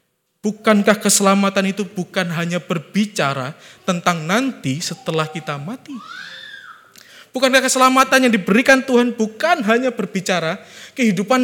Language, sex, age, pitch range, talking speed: Indonesian, male, 20-39, 150-220 Hz, 105 wpm